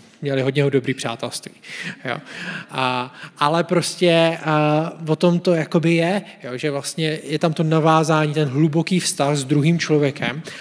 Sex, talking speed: male, 145 wpm